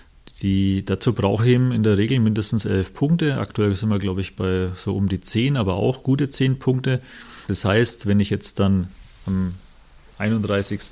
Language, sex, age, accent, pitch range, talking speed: German, male, 40-59, German, 100-125 Hz, 185 wpm